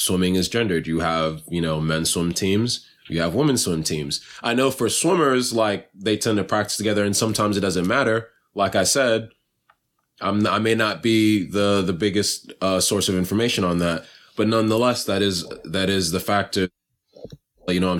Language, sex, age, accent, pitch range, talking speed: English, male, 20-39, American, 95-115 Hz, 195 wpm